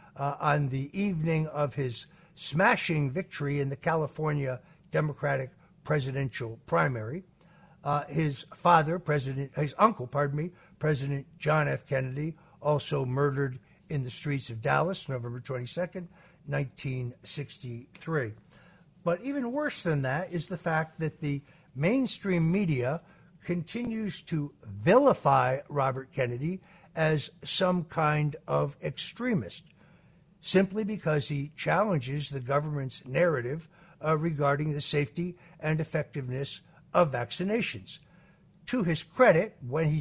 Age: 60-79